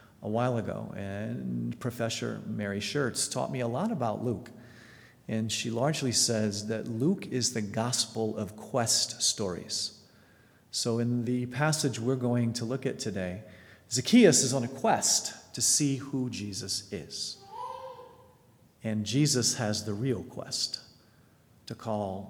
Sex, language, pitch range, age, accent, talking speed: male, English, 110-145 Hz, 40-59, American, 145 wpm